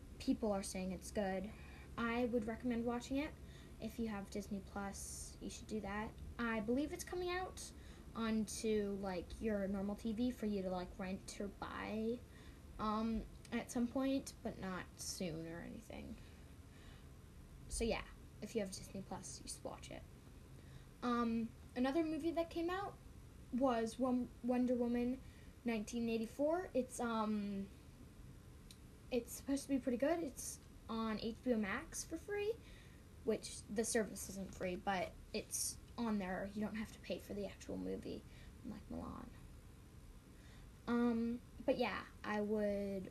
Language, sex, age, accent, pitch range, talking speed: English, female, 10-29, American, 200-245 Hz, 145 wpm